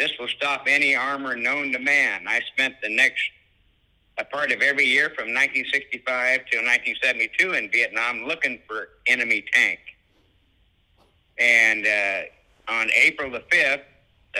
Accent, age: American, 60-79